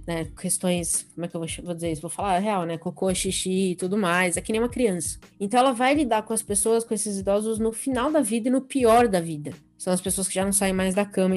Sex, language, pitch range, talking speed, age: female, Portuguese, 180-230 Hz, 275 wpm, 20-39